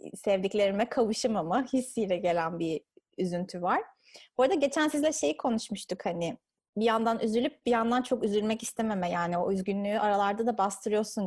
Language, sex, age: Turkish, female, 30-49